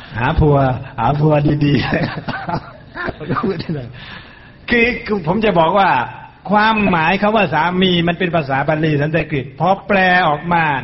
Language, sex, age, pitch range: Thai, male, 60-79, 120-175 Hz